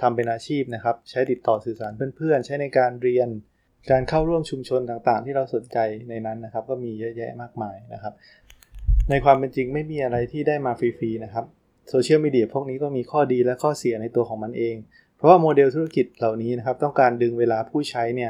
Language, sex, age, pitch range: Thai, male, 20-39, 115-135 Hz